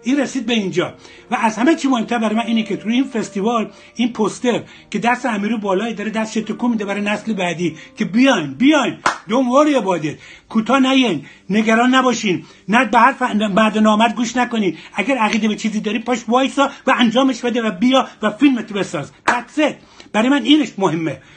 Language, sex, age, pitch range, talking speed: Persian, male, 60-79, 190-240 Hz, 180 wpm